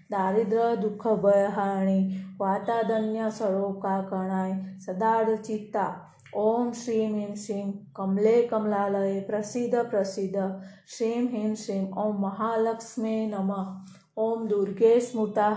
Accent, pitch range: native, 195-225 Hz